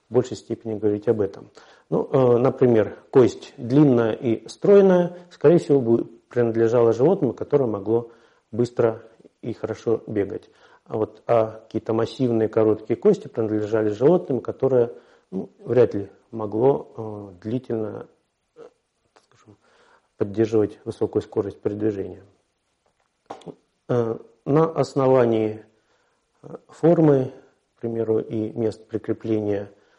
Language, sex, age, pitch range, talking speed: Russian, male, 50-69, 110-140 Hz, 95 wpm